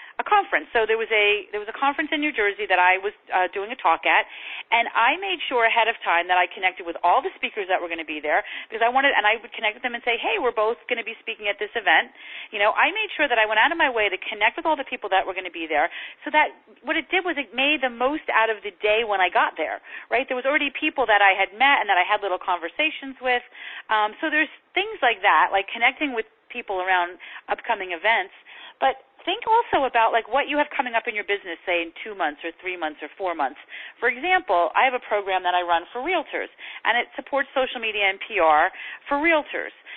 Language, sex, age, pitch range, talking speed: English, female, 40-59, 195-275 Hz, 265 wpm